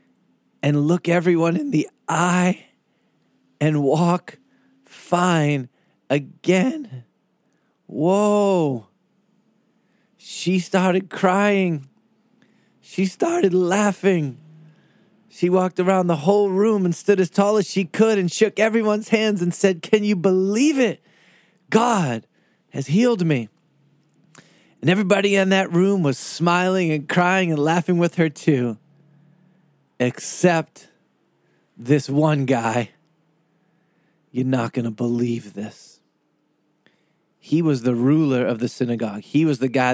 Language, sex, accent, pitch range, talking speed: English, male, American, 140-190 Hz, 120 wpm